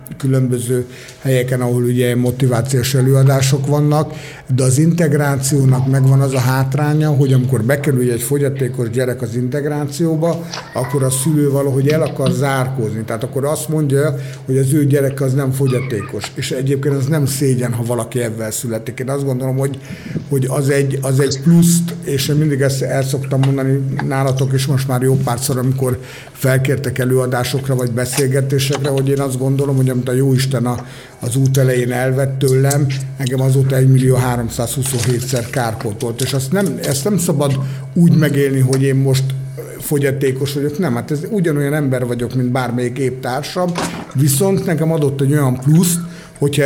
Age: 60-79